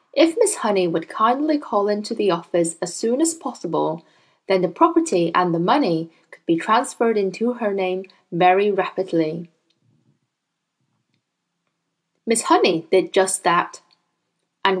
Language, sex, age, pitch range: Chinese, female, 10-29, 180-245 Hz